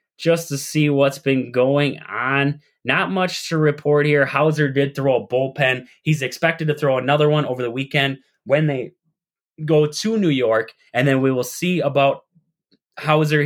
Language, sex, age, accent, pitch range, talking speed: English, male, 20-39, American, 120-155 Hz, 175 wpm